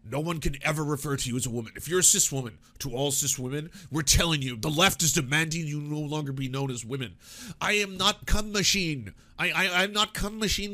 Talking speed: 245 wpm